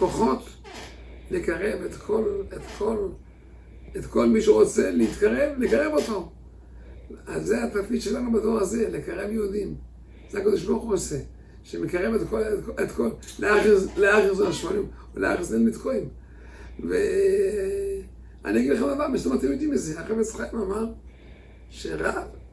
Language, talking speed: English, 75 wpm